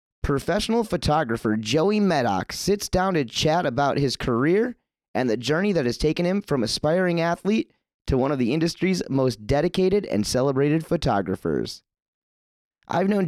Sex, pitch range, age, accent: male, 125-170 Hz, 30-49, American